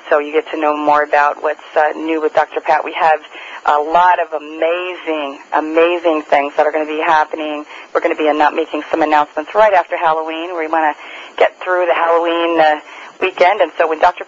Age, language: 40-59, English